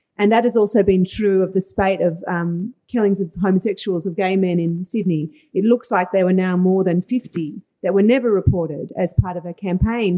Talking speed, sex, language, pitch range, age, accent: 220 wpm, female, English, 180-205 Hz, 40-59, Australian